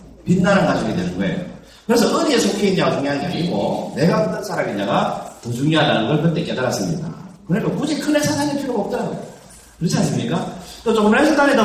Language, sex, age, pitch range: Korean, male, 40-59, 160-210 Hz